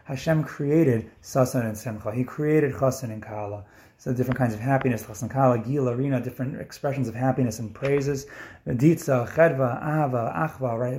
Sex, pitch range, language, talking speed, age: male, 115-135 Hz, English, 165 wpm, 30-49